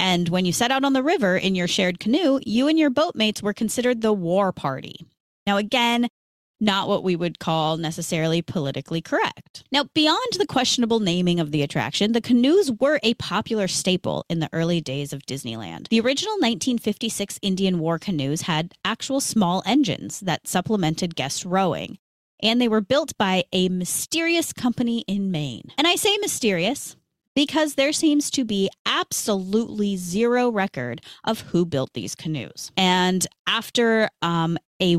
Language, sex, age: English, female, 30-49